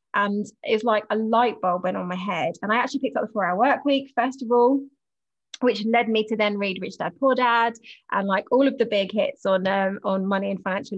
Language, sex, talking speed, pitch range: English, female, 245 wpm, 200-250 Hz